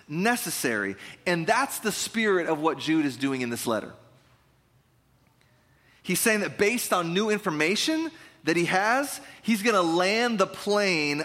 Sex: male